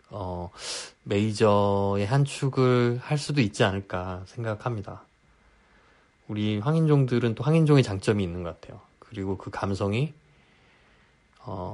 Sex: male